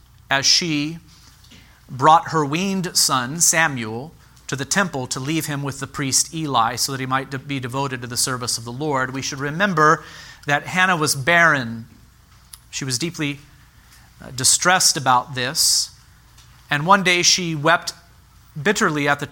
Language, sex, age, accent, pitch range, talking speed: English, male, 40-59, American, 125-160 Hz, 155 wpm